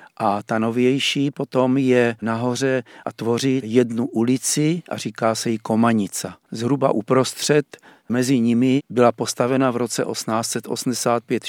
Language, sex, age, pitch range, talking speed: Czech, male, 50-69, 110-125 Hz, 125 wpm